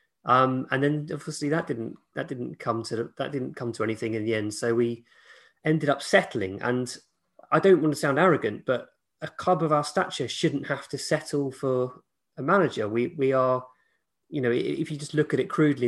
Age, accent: 30-49, British